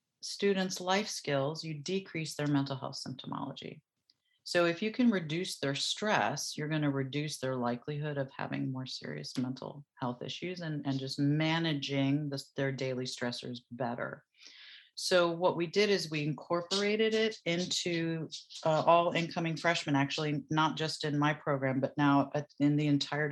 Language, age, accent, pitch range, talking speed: English, 40-59, American, 135-160 Hz, 155 wpm